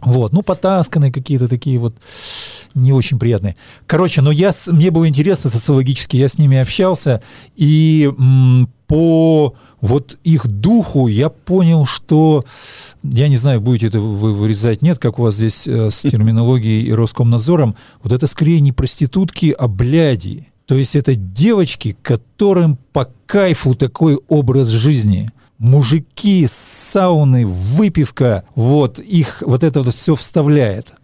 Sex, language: male, Russian